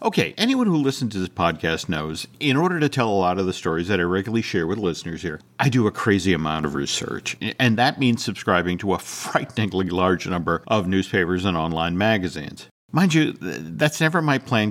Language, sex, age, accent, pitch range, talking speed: English, male, 50-69, American, 95-150 Hz, 210 wpm